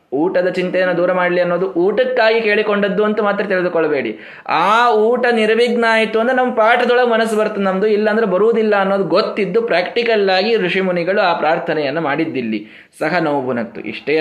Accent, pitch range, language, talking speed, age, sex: native, 140-210 Hz, Kannada, 145 wpm, 20-39, male